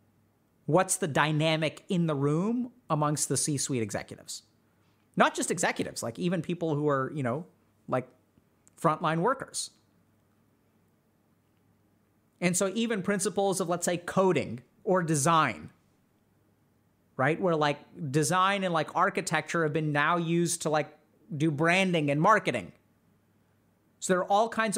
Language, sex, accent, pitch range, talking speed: English, male, American, 120-185 Hz, 135 wpm